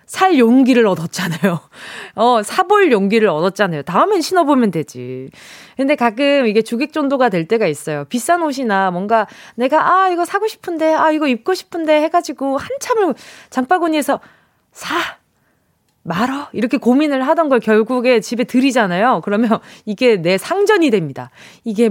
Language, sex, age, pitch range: Korean, female, 20-39, 200-310 Hz